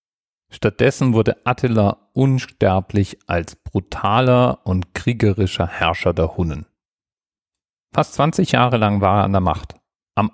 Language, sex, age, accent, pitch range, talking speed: German, male, 40-59, German, 95-125 Hz, 120 wpm